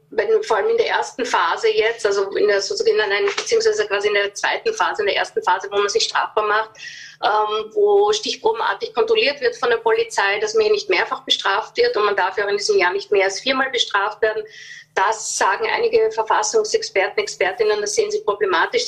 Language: German